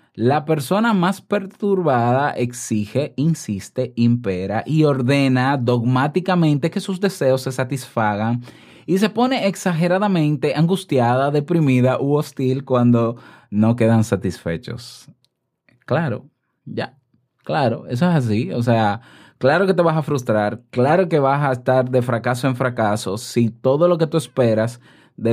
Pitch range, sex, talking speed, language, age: 115-150 Hz, male, 135 wpm, Spanish, 20-39